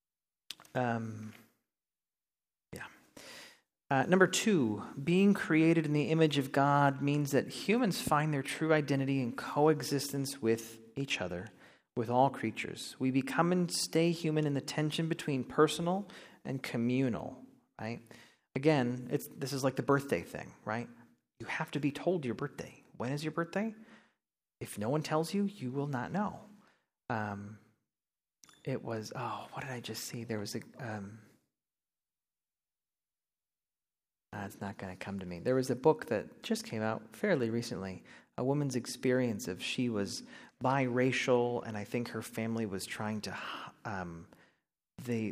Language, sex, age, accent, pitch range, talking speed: English, male, 30-49, American, 110-150 Hz, 155 wpm